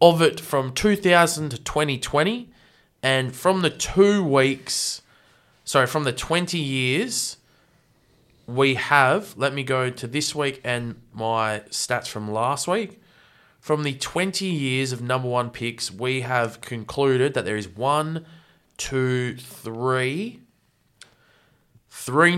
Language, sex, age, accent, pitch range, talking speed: English, male, 20-39, Australian, 115-150 Hz, 130 wpm